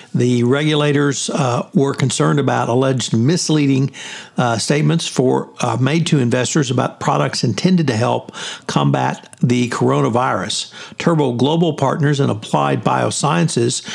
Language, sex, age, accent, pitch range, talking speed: English, male, 60-79, American, 125-155 Hz, 125 wpm